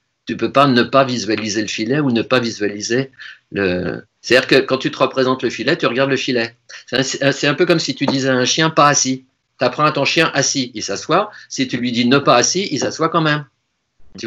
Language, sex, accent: French, male, French